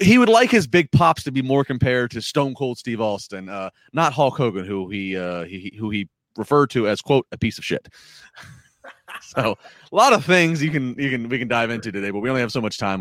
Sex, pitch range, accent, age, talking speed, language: male, 105-140 Hz, American, 30-49, 250 wpm, English